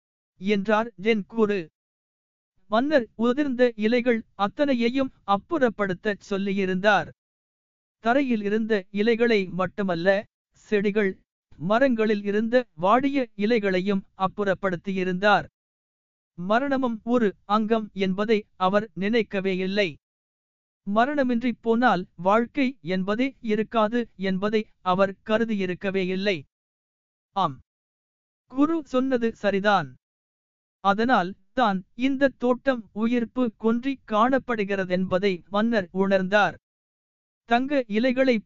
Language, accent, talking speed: Tamil, native, 80 wpm